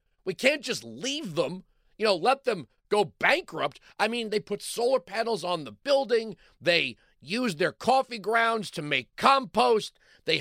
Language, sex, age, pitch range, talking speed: English, male, 40-59, 140-205 Hz, 165 wpm